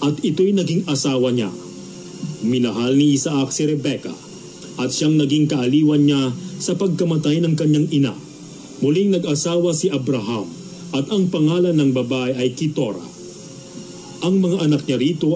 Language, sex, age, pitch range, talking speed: Filipino, male, 40-59, 130-160 Hz, 140 wpm